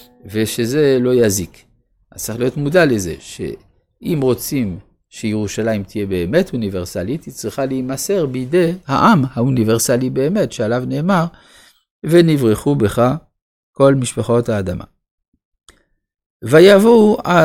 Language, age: Hebrew, 50-69